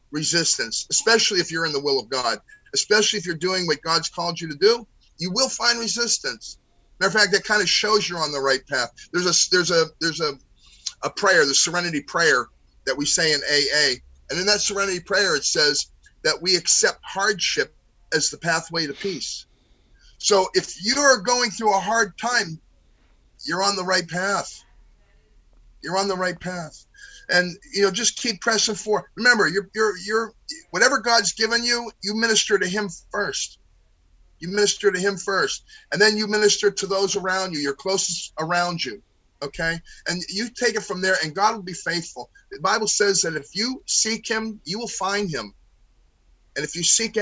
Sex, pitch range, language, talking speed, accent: male, 165-215 Hz, English, 185 wpm, American